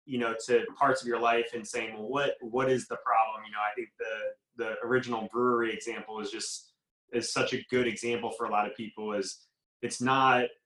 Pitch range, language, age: 110-130 Hz, English, 20-39